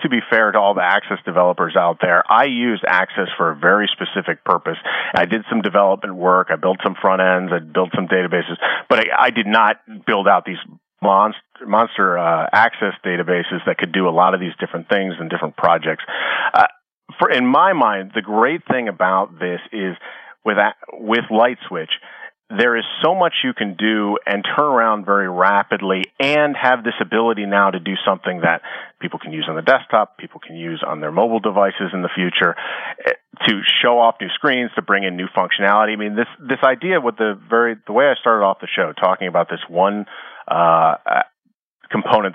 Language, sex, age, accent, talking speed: English, male, 40-59, American, 200 wpm